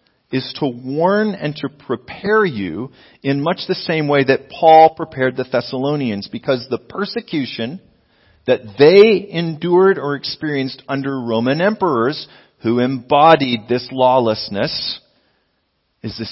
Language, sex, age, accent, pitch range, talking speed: English, male, 40-59, American, 120-155 Hz, 125 wpm